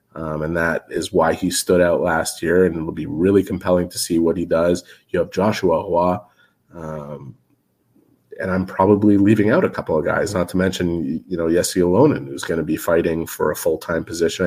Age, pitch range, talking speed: 30-49, 90-105 Hz, 210 wpm